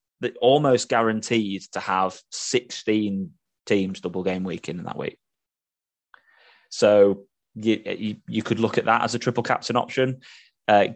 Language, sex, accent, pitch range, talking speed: English, male, British, 100-115 Hz, 150 wpm